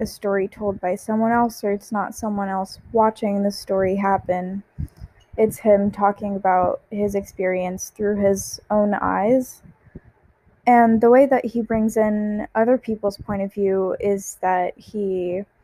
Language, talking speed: English, 155 wpm